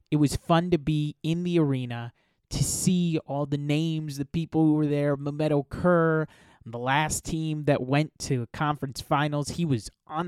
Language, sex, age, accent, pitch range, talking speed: English, male, 20-39, American, 125-155 Hz, 180 wpm